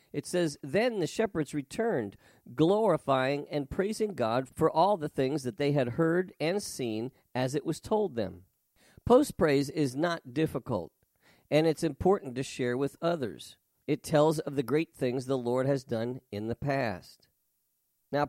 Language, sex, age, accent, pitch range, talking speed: English, male, 50-69, American, 125-170 Hz, 165 wpm